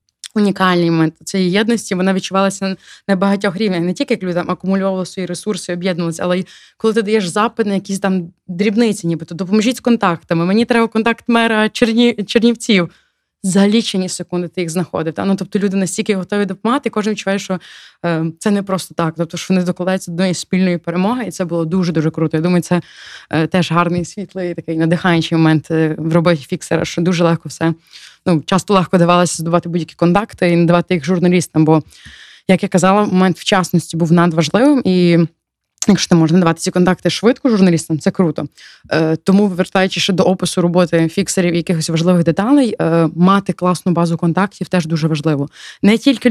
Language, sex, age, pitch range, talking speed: Ukrainian, female, 20-39, 170-200 Hz, 180 wpm